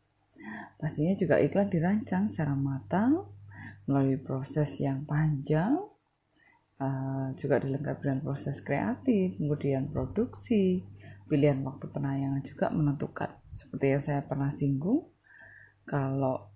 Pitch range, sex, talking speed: 105-175 Hz, female, 100 wpm